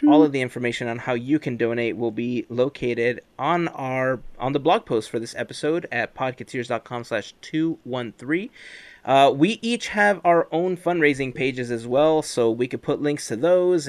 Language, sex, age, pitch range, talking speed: English, male, 30-49, 120-150 Hz, 180 wpm